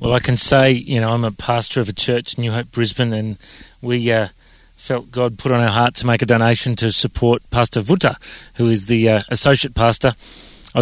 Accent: Australian